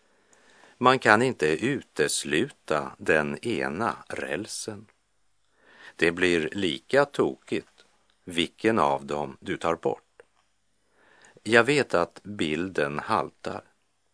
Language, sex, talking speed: Czech, male, 95 wpm